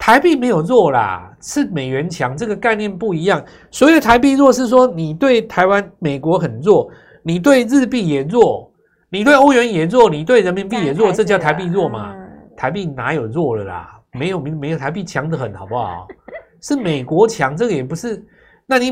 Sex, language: male, Chinese